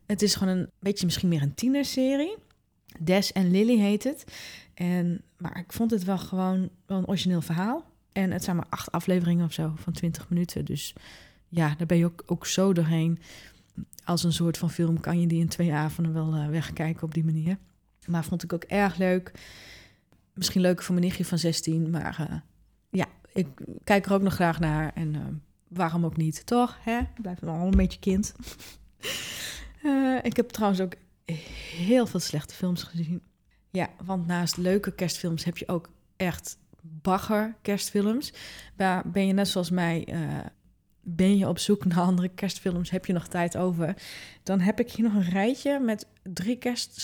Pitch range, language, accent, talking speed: 165-195 Hz, Dutch, Dutch, 185 wpm